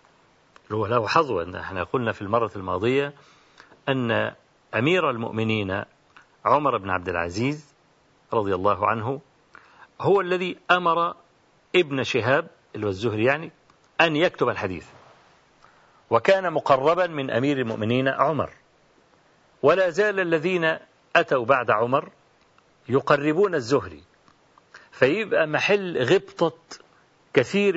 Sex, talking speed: male, 100 wpm